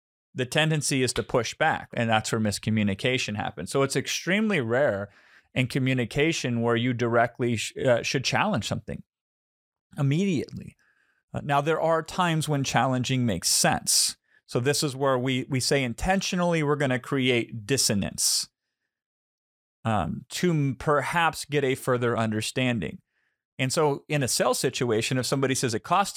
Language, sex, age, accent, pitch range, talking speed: English, male, 40-59, American, 120-150 Hz, 150 wpm